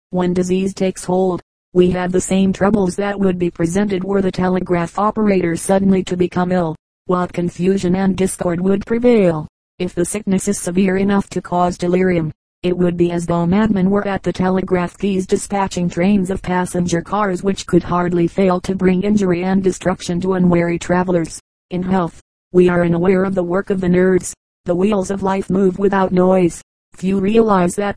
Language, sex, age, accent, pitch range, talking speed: English, female, 40-59, American, 180-195 Hz, 180 wpm